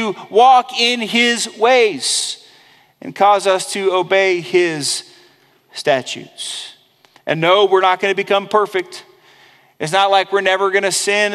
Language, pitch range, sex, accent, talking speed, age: English, 170-205 Hz, male, American, 145 wpm, 40-59